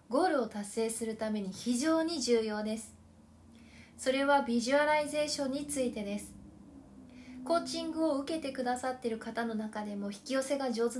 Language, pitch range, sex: Japanese, 225-285 Hz, female